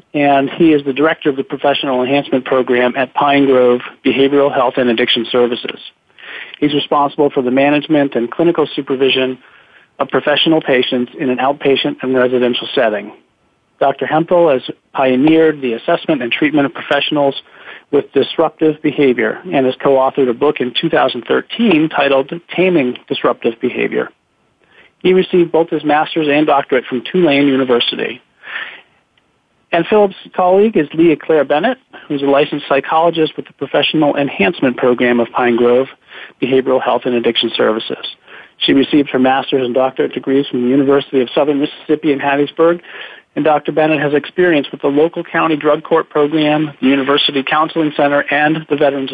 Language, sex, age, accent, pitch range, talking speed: English, male, 40-59, American, 130-155 Hz, 155 wpm